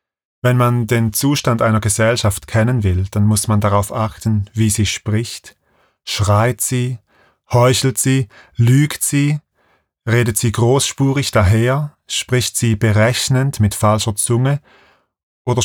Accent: German